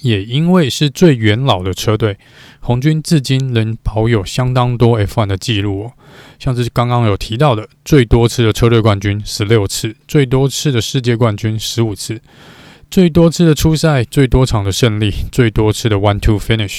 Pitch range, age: 105-135 Hz, 20-39